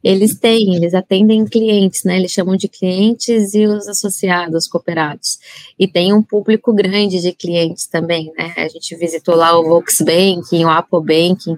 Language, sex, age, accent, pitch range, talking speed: Portuguese, female, 20-39, Brazilian, 180-215 Hz, 170 wpm